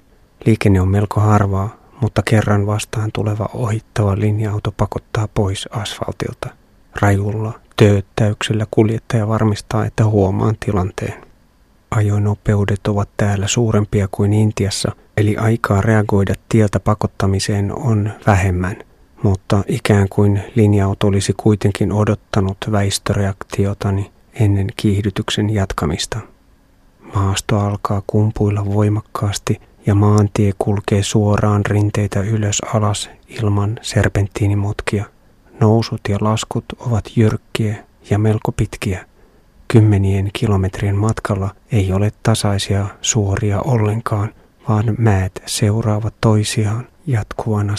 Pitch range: 100-110 Hz